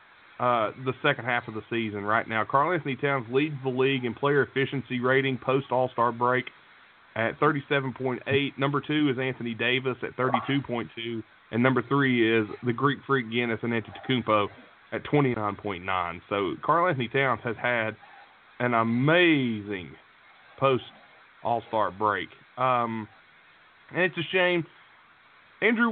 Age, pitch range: 30-49, 120-160 Hz